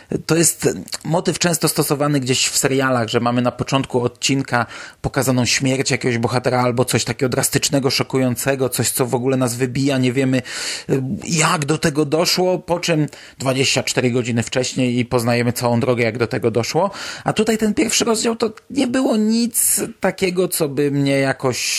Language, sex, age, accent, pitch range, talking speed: Polish, male, 30-49, native, 125-165 Hz, 170 wpm